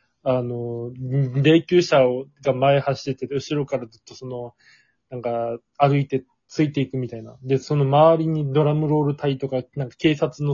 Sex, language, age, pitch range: male, Japanese, 20-39, 130-150 Hz